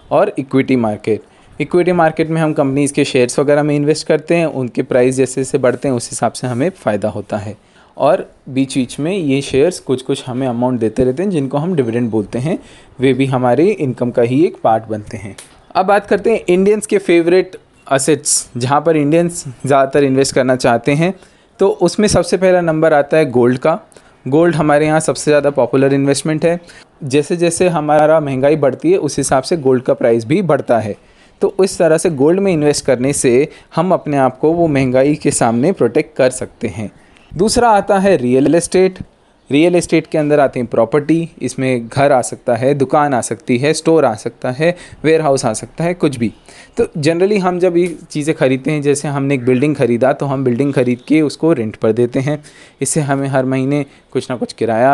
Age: 20-39